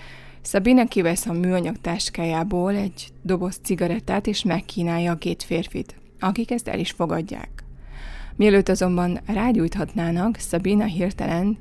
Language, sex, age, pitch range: Hungarian, female, 20-39, 170-205 Hz